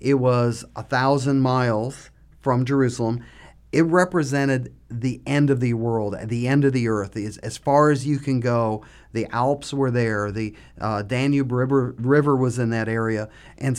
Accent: American